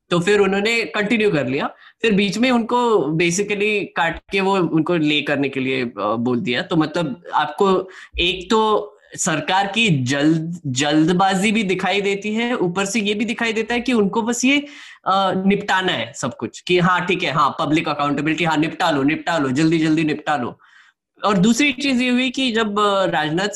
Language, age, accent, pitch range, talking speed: Hindi, 10-29, native, 160-215 Hz, 185 wpm